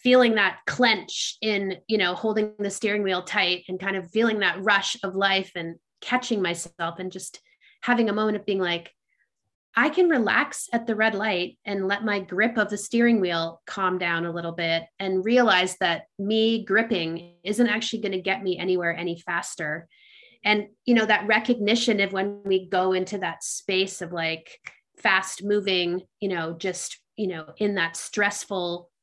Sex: female